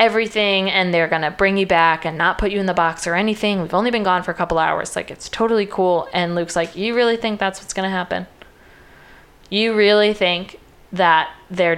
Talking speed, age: 220 wpm, 20-39